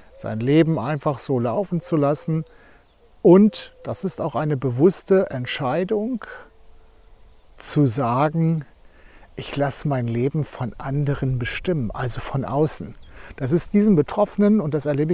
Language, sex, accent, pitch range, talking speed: German, male, German, 135-175 Hz, 130 wpm